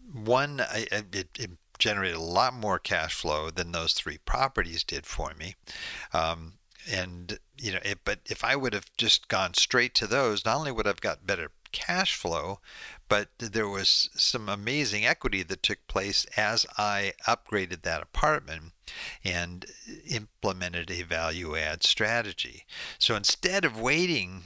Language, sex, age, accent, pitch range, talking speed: English, male, 60-79, American, 85-115 Hz, 155 wpm